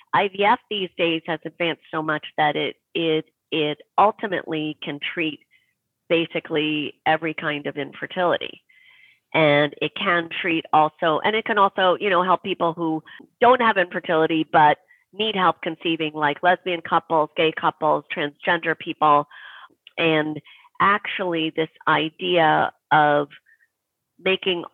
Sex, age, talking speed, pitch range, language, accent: female, 40-59, 130 wpm, 155-190 Hz, English, American